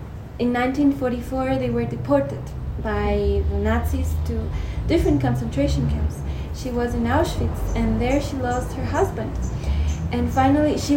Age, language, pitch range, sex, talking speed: 20-39, English, 80-110 Hz, female, 135 wpm